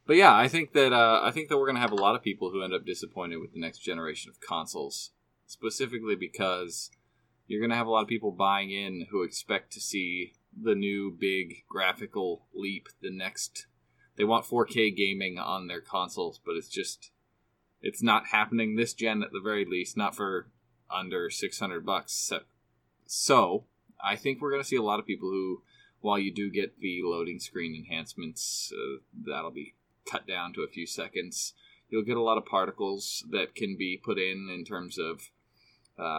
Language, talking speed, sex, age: English, 195 wpm, male, 20-39